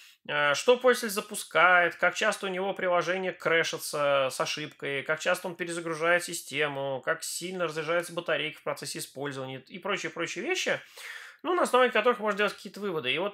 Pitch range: 155-200 Hz